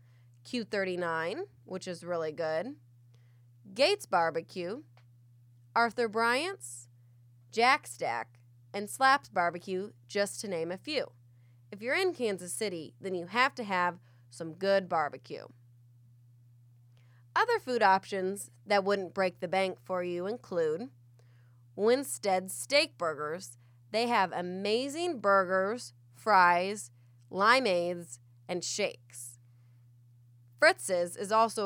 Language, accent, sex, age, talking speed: English, American, female, 20-39, 110 wpm